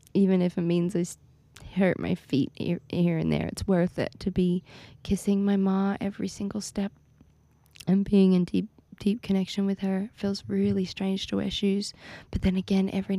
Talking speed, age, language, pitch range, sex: 195 wpm, 20-39, English, 150-200 Hz, female